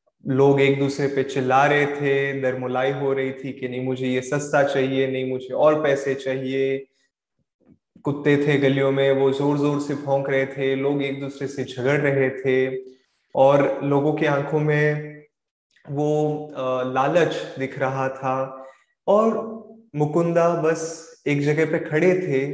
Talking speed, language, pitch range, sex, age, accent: 155 wpm, Hindi, 135-155 Hz, male, 20-39, native